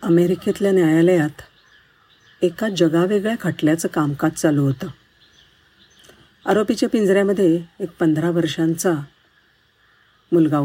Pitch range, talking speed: 155-195 Hz, 85 wpm